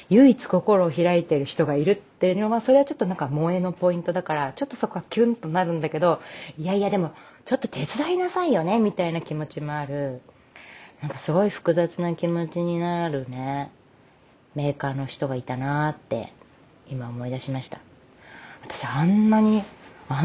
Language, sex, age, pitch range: Japanese, female, 30-49, 140-180 Hz